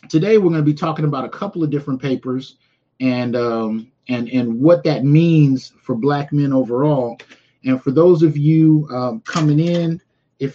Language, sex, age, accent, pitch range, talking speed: English, male, 30-49, American, 125-150 Hz, 180 wpm